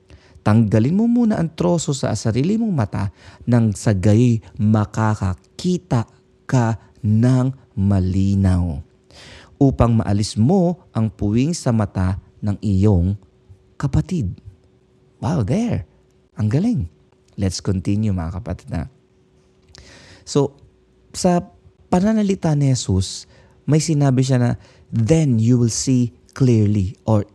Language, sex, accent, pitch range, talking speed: Filipino, male, native, 95-140 Hz, 110 wpm